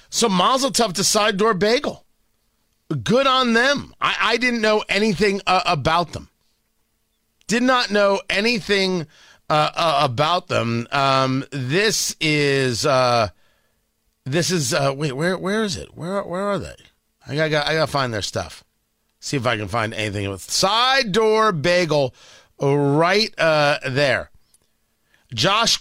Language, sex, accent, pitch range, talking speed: English, male, American, 135-200 Hz, 145 wpm